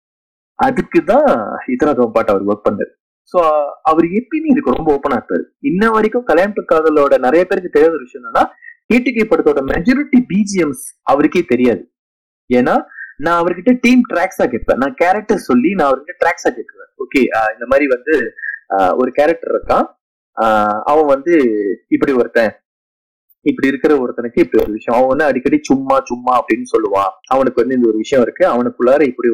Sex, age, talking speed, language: male, 20-39, 140 wpm, Tamil